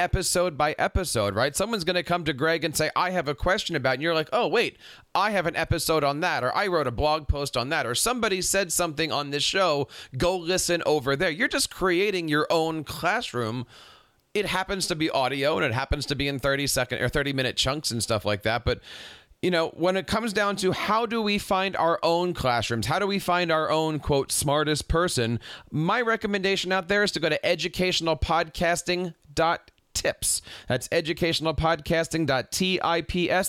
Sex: male